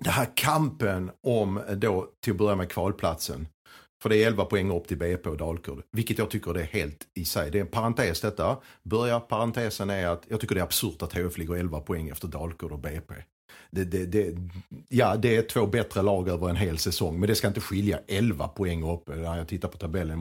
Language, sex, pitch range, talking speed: Swedish, male, 95-140 Hz, 225 wpm